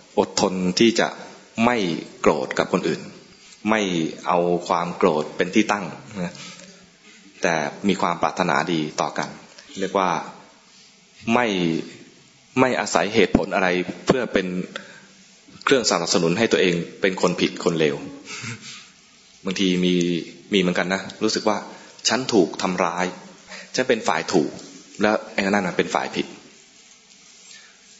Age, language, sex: 20-39, English, male